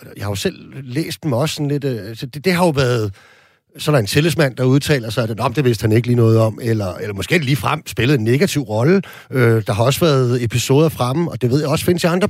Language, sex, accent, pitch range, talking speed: Danish, male, native, 125-160 Hz, 280 wpm